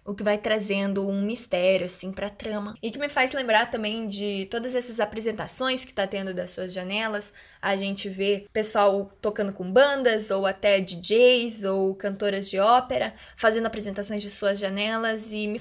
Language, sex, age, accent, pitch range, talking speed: Portuguese, female, 10-29, Brazilian, 205-260 Hz, 175 wpm